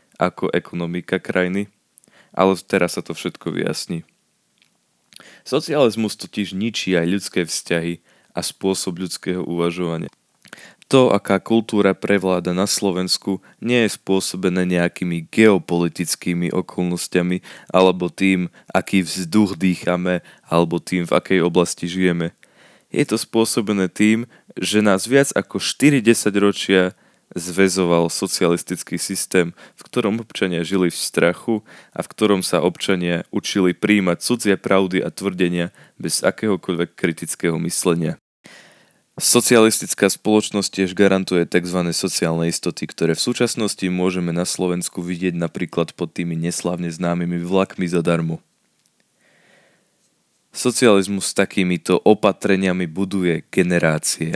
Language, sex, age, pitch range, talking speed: Slovak, male, 20-39, 85-100 Hz, 115 wpm